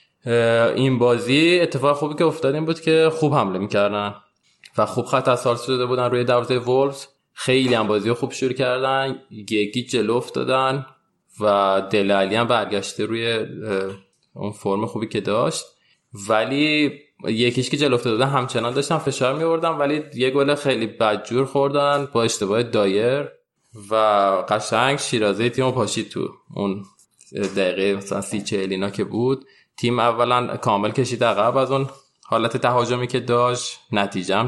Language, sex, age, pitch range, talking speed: Persian, male, 20-39, 105-130 Hz, 140 wpm